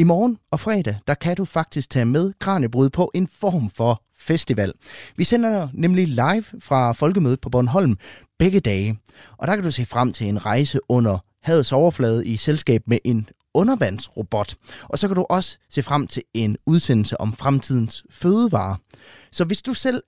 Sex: male